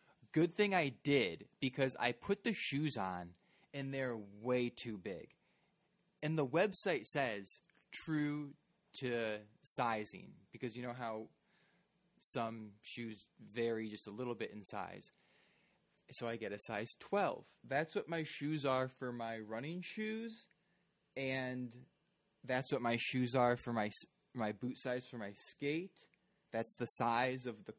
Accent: American